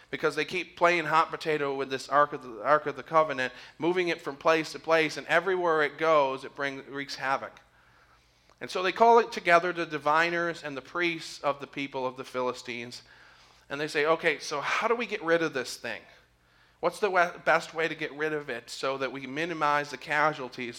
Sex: male